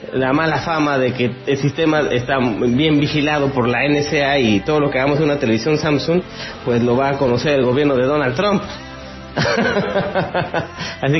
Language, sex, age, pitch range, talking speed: English, male, 30-49, 130-165 Hz, 175 wpm